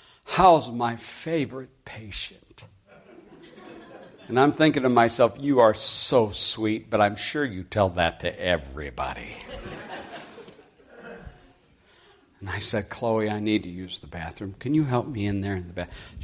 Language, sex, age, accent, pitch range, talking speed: English, male, 60-79, American, 100-125 Hz, 150 wpm